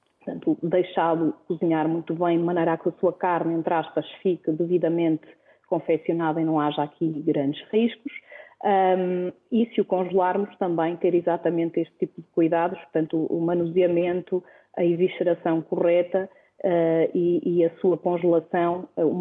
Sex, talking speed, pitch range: female, 145 wpm, 170-190 Hz